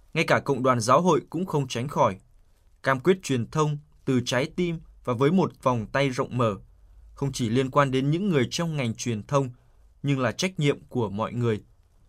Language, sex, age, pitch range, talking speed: Vietnamese, male, 20-39, 115-145 Hz, 210 wpm